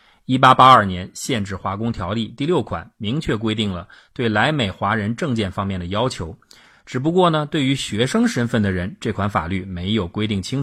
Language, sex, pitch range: Chinese, male, 100-125 Hz